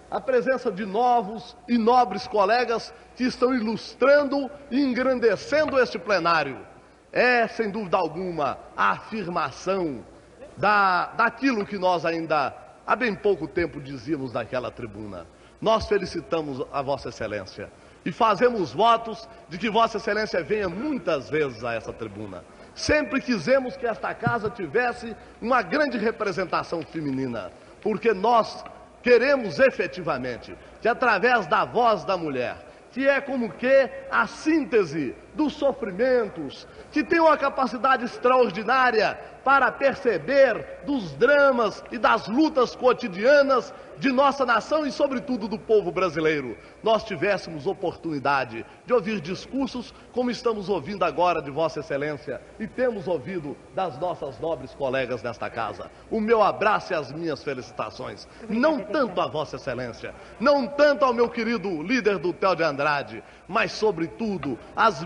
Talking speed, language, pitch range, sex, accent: 135 wpm, Portuguese, 175-255 Hz, male, Brazilian